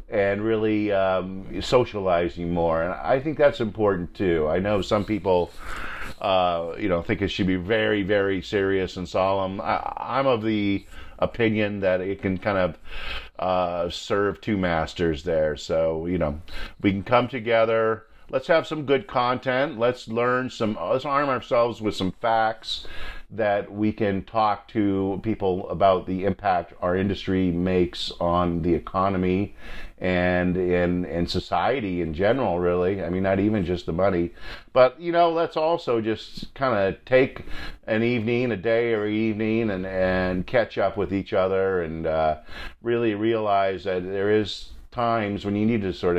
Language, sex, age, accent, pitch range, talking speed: English, male, 50-69, American, 90-110 Hz, 165 wpm